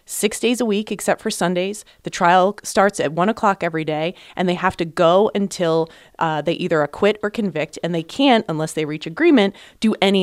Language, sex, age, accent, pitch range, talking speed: English, female, 30-49, American, 160-230 Hz, 210 wpm